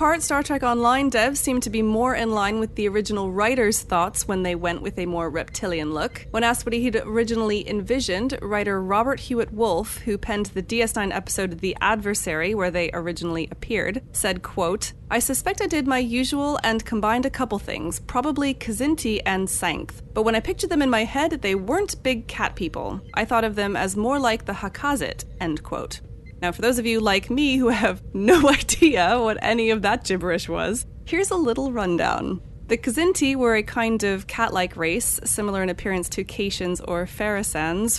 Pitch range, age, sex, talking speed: 185-245 Hz, 30-49, female, 190 wpm